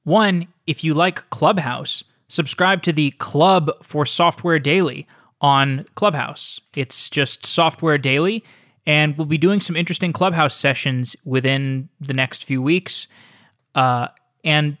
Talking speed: 135 wpm